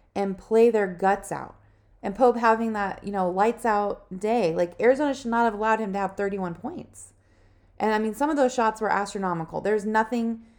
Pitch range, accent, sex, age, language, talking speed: 175-220 Hz, American, female, 20-39, English, 210 wpm